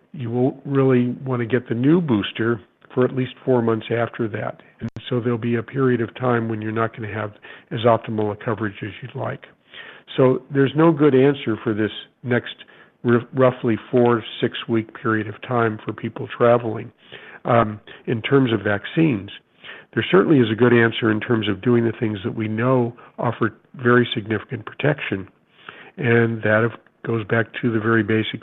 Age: 50-69